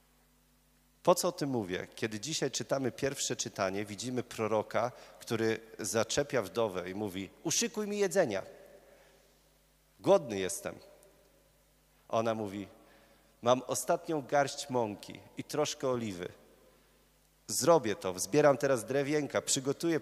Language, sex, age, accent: Polish, male, 40-59, native